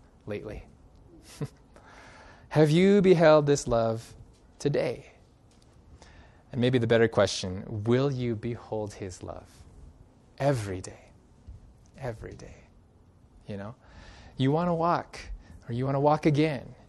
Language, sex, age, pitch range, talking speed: English, male, 20-39, 100-140 Hz, 115 wpm